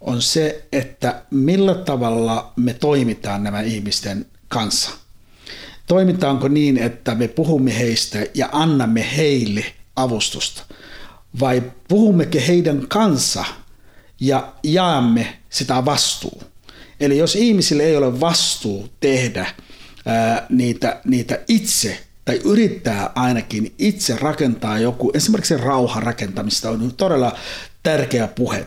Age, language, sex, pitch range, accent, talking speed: 60-79, Finnish, male, 115-155 Hz, native, 110 wpm